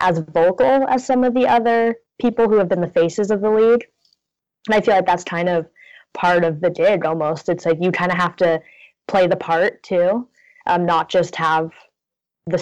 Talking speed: 210 wpm